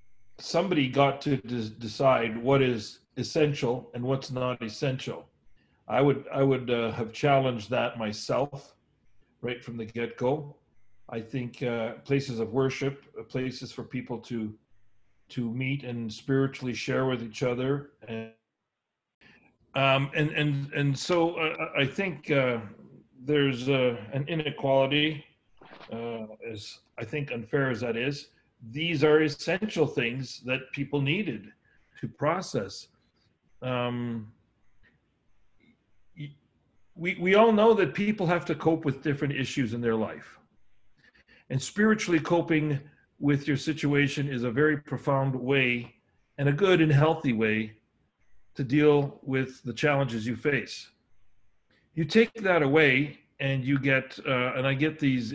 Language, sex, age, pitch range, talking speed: English, male, 40-59, 120-145 Hz, 135 wpm